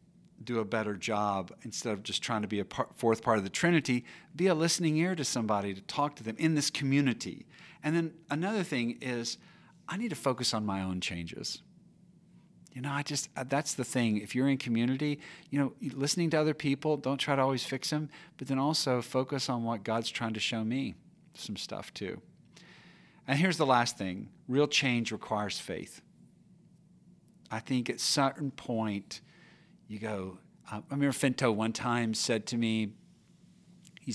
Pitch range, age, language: 115-170 Hz, 50-69, English